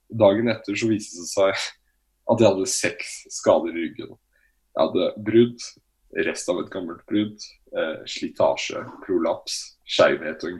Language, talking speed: English, 145 wpm